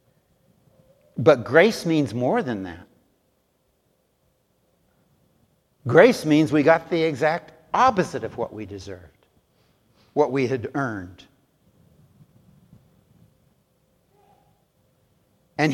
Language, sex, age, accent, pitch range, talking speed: English, male, 60-79, American, 120-160 Hz, 85 wpm